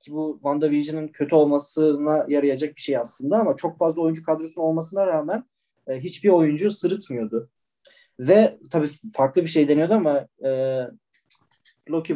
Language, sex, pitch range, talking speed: Turkish, male, 130-155 Hz, 145 wpm